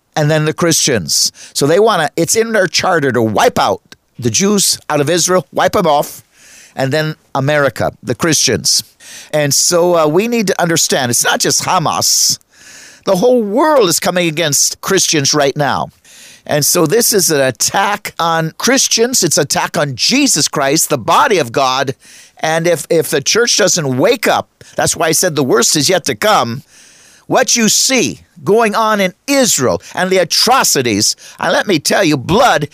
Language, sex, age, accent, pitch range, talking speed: English, male, 50-69, American, 150-195 Hz, 185 wpm